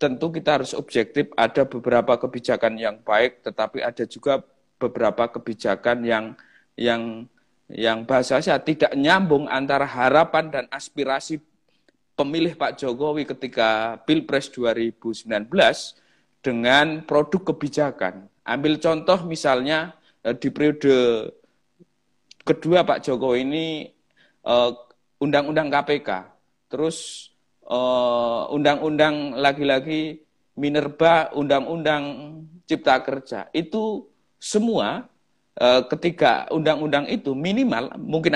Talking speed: 95 wpm